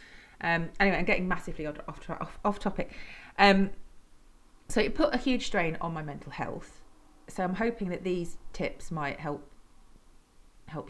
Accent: British